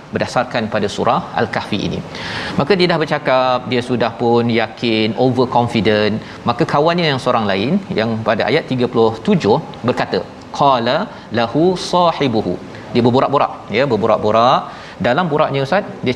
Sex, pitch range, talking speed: male, 120-150 Hz, 135 wpm